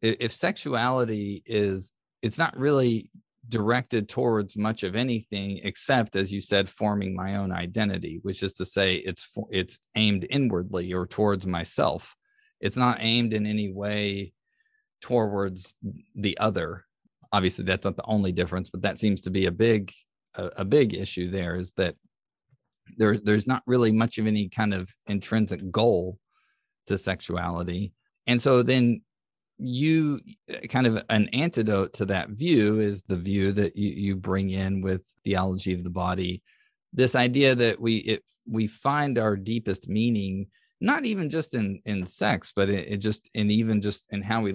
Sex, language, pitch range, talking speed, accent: male, English, 95-120 Hz, 165 wpm, American